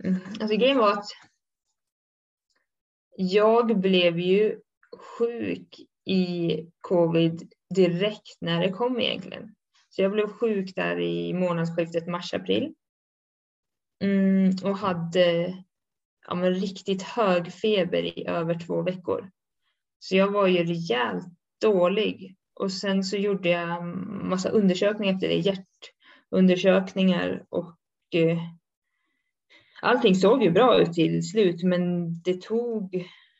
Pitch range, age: 170-210 Hz, 20-39